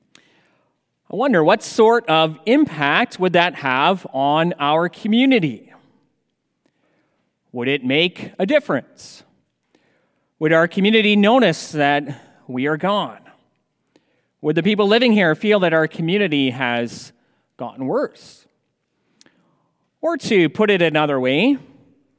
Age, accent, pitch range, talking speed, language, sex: 30-49, American, 145-200 Hz, 115 wpm, English, male